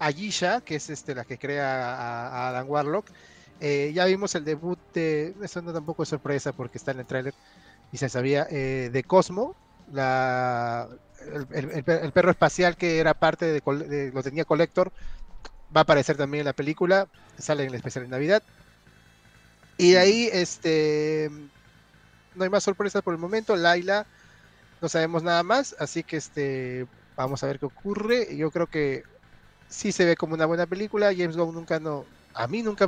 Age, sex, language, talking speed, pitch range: 30-49, male, Spanish, 185 wpm, 130-170 Hz